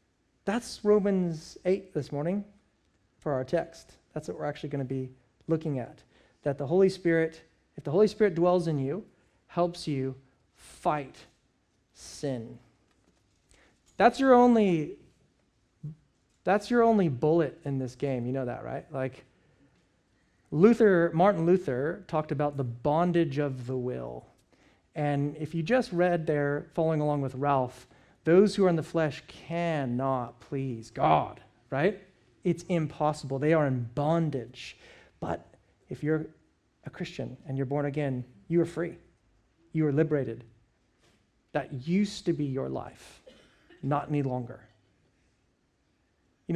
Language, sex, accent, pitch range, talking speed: English, male, American, 130-175 Hz, 140 wpm